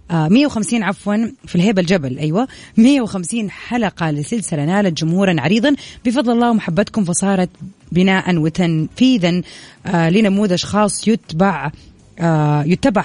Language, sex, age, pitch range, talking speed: Arabic, female, 30-49, 165-210 Hz, 100 wpm